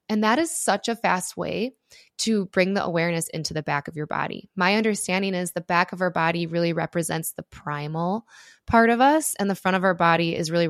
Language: English